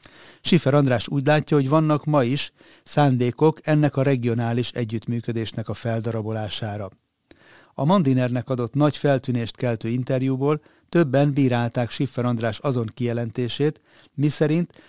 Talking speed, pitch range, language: 115 wpm, 115-145 Hz, Hungarian